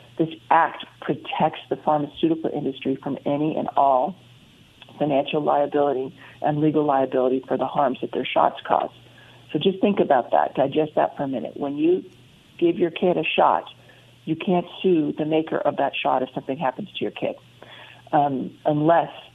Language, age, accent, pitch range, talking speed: English, 50-69, American, 140-170 Hz, 170 wpm